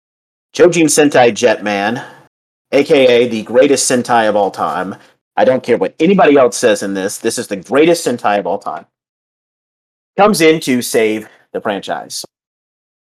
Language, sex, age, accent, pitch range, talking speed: English, male, 40-59, American, 115-145 Hz, 150 wpm